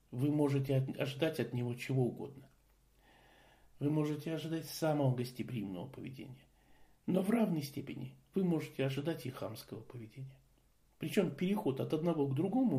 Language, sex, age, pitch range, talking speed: Russian, male, 50-69, 130-185 Hz, 135 wpm